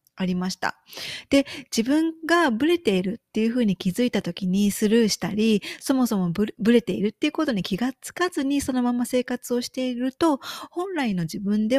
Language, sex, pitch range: Japanese, female, 185-255 Hz